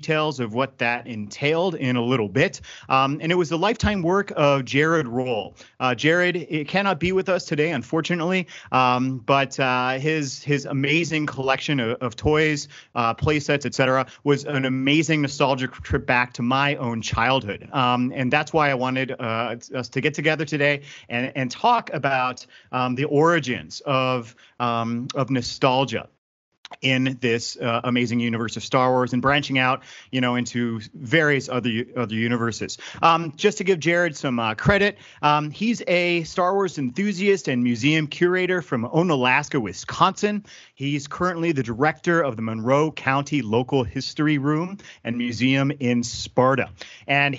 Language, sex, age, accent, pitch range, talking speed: English, male, 30-49, American, 125-160 Hz, 165 wpm